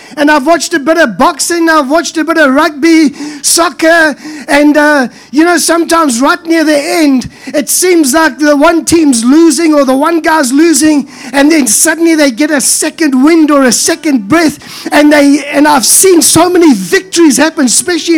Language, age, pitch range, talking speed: English, 20-39, 285-335 Hz, 185 wpm